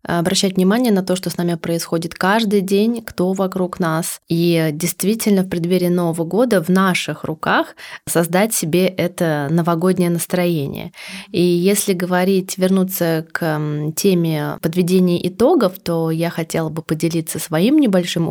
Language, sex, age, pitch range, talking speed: Russian, female, 20-39, 170-220 Hz, 140 wpm